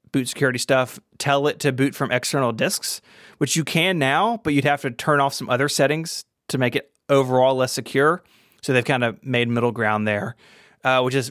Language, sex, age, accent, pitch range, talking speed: English, male, 30-49, American, 115-140 Hz, 210 wpm